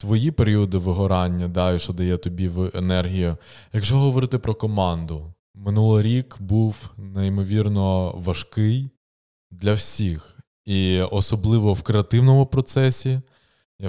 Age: 20-39